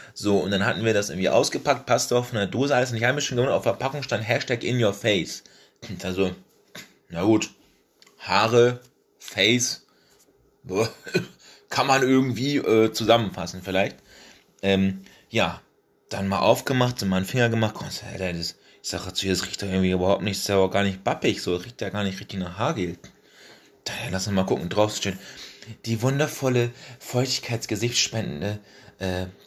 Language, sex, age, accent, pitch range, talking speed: German, male, 30-49, German, 95-125 Hz, 175 wpm